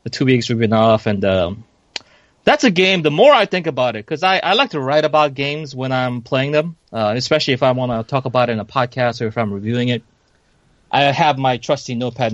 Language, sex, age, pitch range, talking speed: English, male, 30-49, 115-145 Hz, 250 wpm